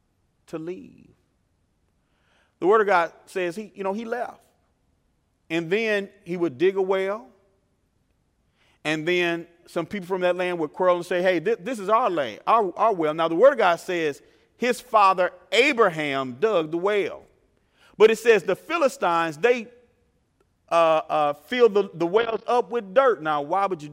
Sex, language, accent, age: male, English, American, 40-59